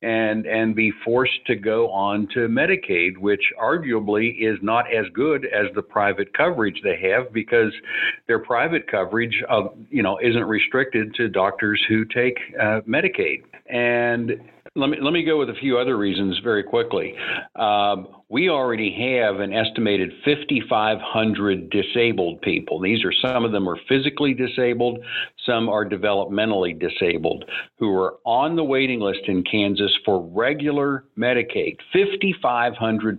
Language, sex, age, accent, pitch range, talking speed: English, male, 60-79, American, 105-125 Hz, 150 wpm